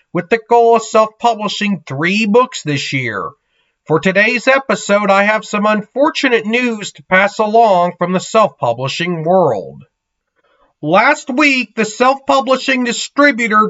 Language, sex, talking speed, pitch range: English, male, 125 wpm, 180-225 Hz